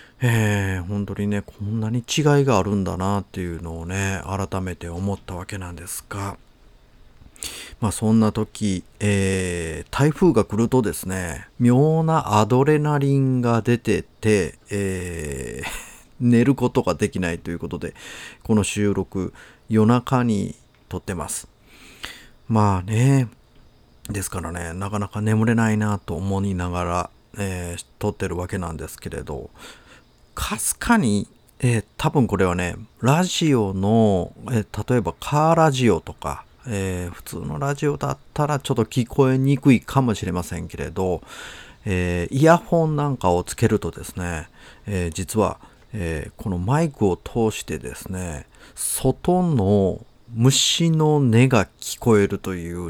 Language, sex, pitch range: Japanese, male, 90-120 Hz